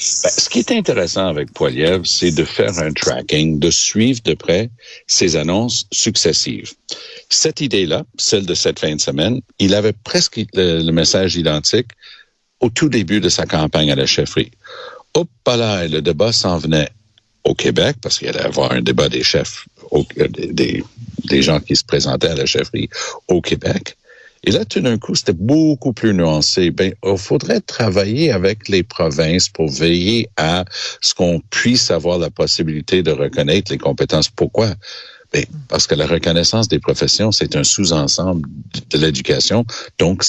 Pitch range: 80-120 Hz